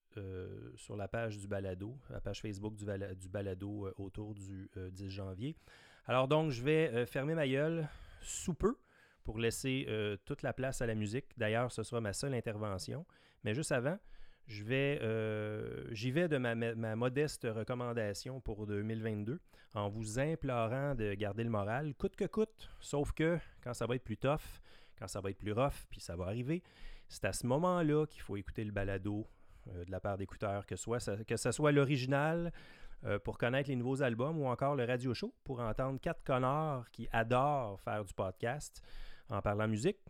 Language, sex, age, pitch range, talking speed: French, male, 30-49, 105-135 Hz, 190 wpm